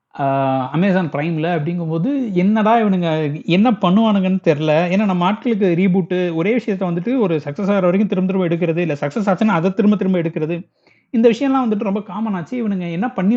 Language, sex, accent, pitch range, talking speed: Tamil, male, native, 150-215 Hz, 170 wpm